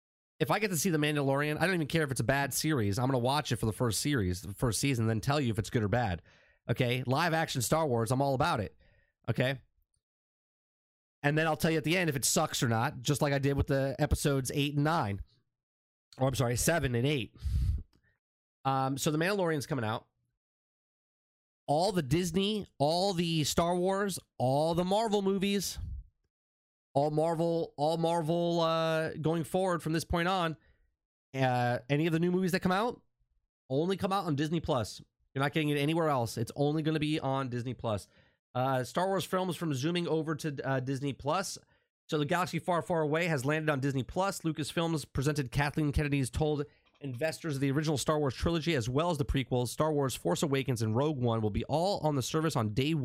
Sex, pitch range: male, 125-160 Hz